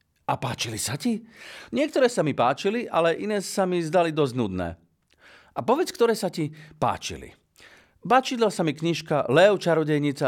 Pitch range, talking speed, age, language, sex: 120-180 Hz, 160 wpm, 50-69, Slovak, male